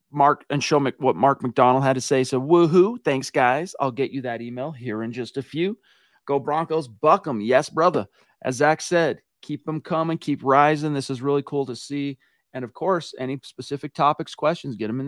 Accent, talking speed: American, 215 wpm